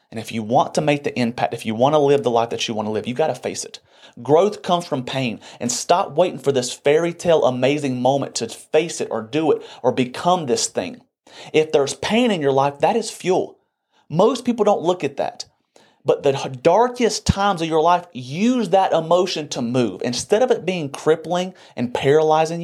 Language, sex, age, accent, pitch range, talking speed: English, male, 30-49, American, 125-175 Hz, 215 wpm